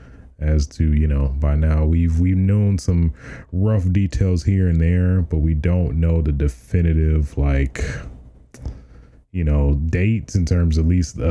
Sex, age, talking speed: male, 30-49, 165 wpm